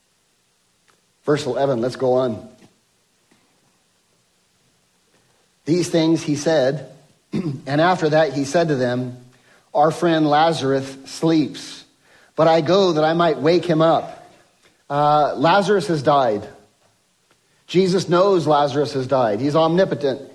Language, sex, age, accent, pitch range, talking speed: English, male, 50-69, American, 140-175 Hz, 120 wpm